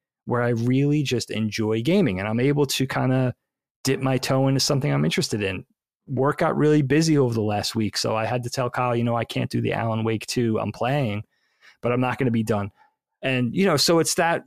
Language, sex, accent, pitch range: English, male, American, 110-135 Hz